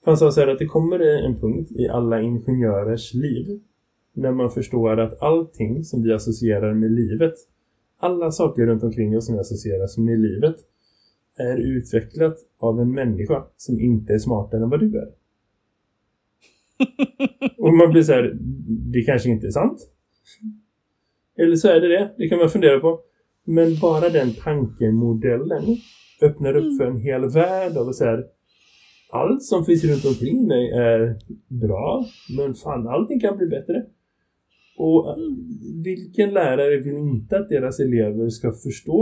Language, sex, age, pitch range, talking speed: Swedish, male, 20-39, 115-170 Hz, 155 wpm